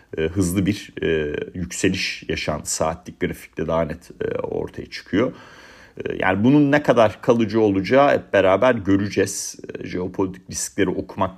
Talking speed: 115 wpm